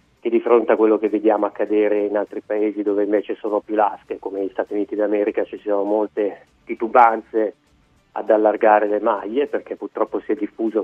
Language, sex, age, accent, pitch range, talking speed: Italian, male, 30-49, native, 100-110 Hz, 190 wpm